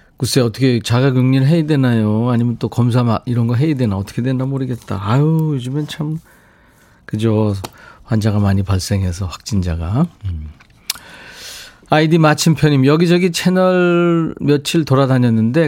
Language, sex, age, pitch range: Korean, male, 40-59, 105-155 Hz